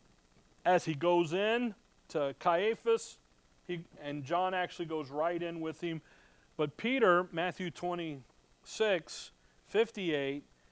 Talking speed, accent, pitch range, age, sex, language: 110 wpm, American, 120-175 Hz, 40-59, male, English